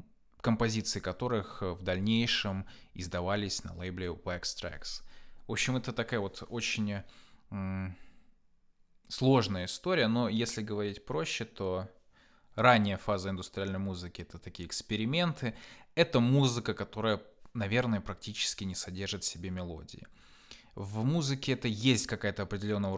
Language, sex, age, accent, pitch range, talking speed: Russian, male, 20-39, native, 95-120 Hz, 120 wpm